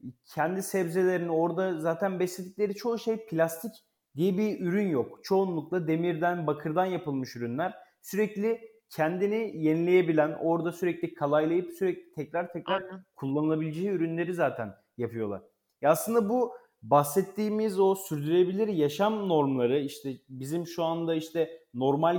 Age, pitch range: 30-49, 150-205 Hz